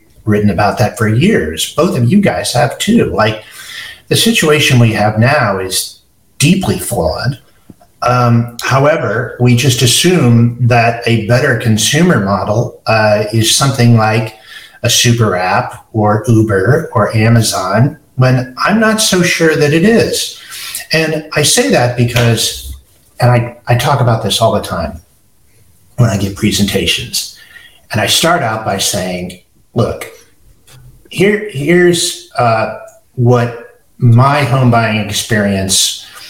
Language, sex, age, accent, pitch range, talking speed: English, male, 50-69, American, 105-130 Hz, 135 wpm